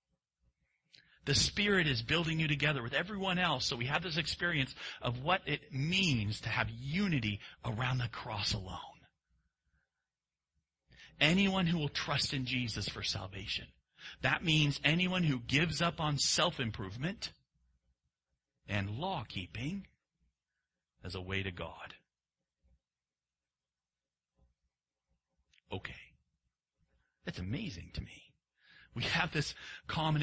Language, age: English, 40-59